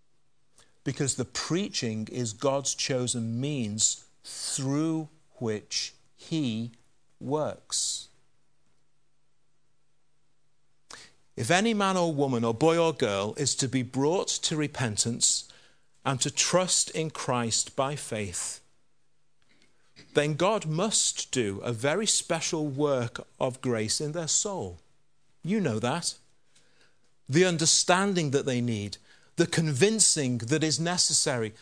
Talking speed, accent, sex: 110 wpm, British, male